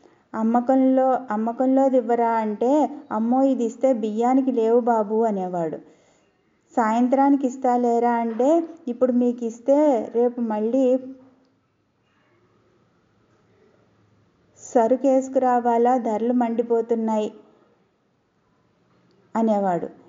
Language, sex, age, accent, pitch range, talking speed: Telugu, female, 20-39, native, 225-260 Hz, 70 wpm